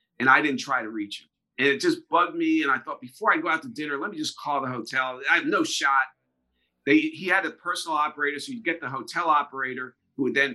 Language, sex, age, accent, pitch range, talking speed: English, male, 40-59, American, 120-170 Hz, 260 wpm